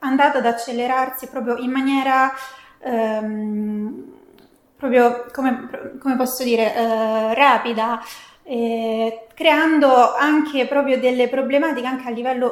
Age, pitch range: 20-39, 230-265 Hz